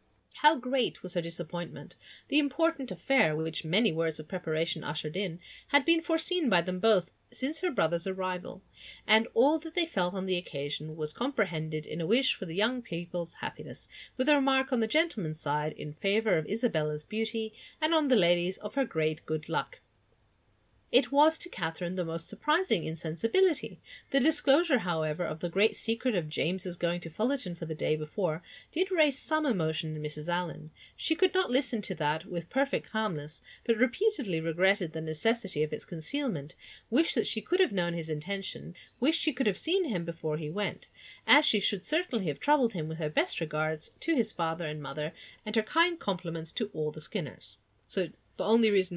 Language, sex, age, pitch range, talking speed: English, female, 30-49, 160-260 Hz, 190 wpm